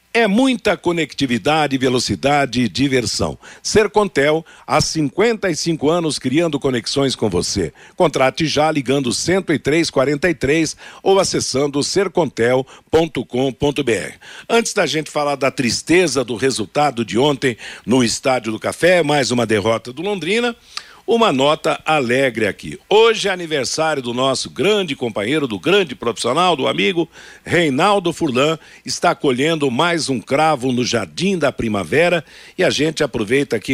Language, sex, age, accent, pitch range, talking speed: Portuguese, male, 60-79, Brazilian, 125-165 Hz, 130 wpm